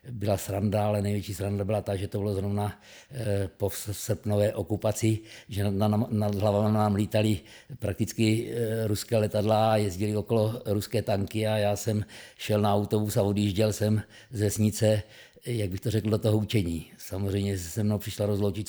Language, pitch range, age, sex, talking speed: Czech, 100-110 Hz, 50-69, male, 160 wpm